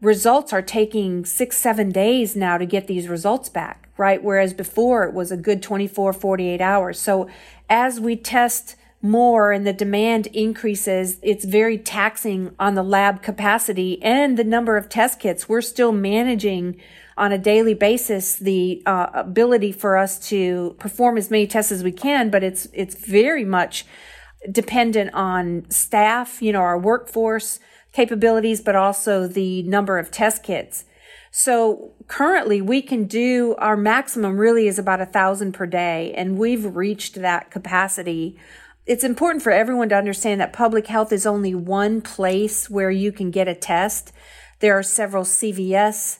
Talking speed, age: 165 wpm, 40-59